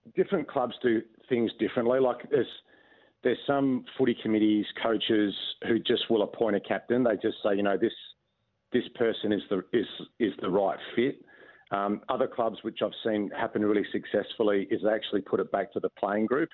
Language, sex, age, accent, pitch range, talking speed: English, male, 40-59, Australian, 100-110 Hz, 190 wpm